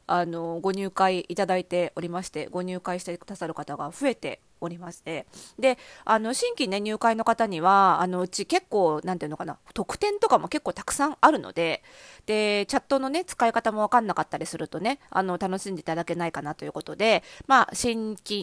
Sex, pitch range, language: female, 175-260 Hz, Japanese